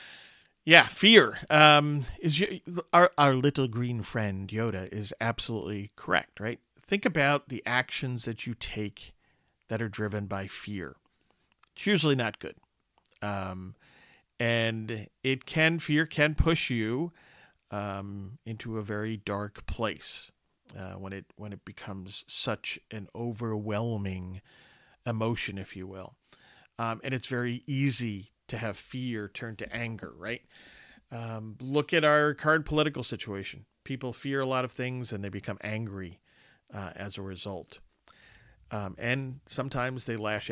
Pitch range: 105-135 Hz